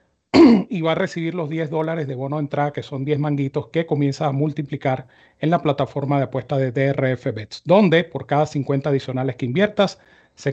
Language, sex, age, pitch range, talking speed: Spanish, male, 40-59, 130-160 Hz, 200 wpm